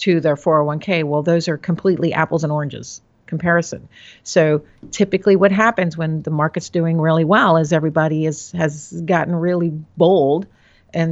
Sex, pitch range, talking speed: female, 145-175 Hz, 155 wpm